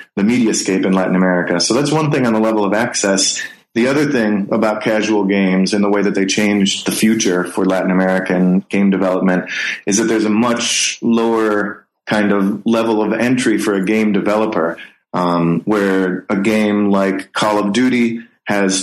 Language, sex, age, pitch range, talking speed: English, male, 30-49, 95-110 Hz, 185 wpm